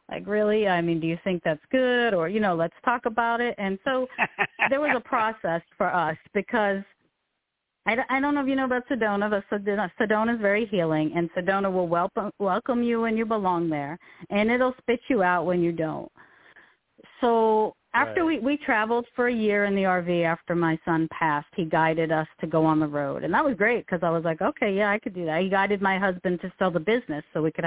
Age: 40-59